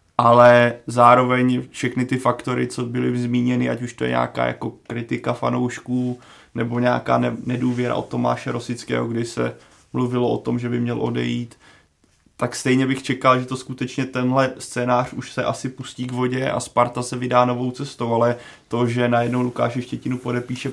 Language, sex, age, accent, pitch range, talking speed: Czech, male, 20-39, native, 115-125 Hz, 170 wpm